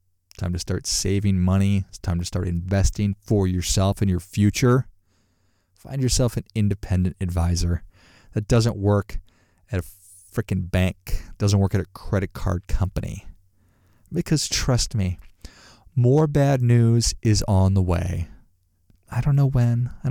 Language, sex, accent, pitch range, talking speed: English, male, American, 90-115 Hz, 145 wpm